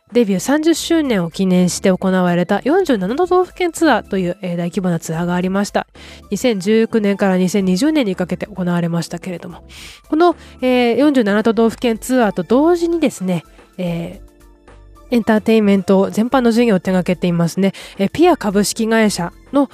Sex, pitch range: female, 185-260 Hz